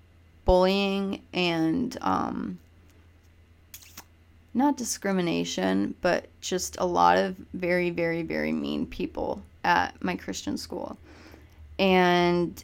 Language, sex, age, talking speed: English, female, 20-39, 95 wpm